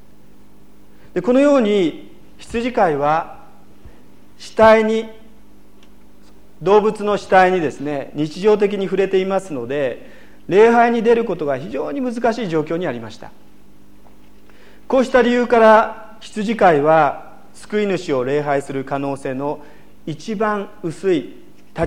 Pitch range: 140-210 Hz